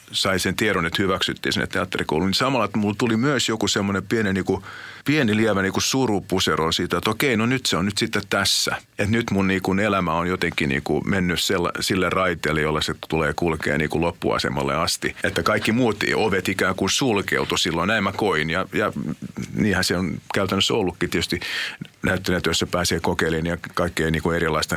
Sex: male